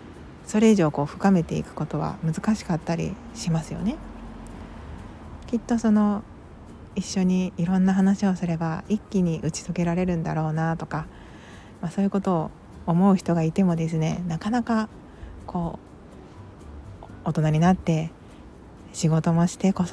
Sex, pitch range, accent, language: female, 160-200 Hz, native, Japanese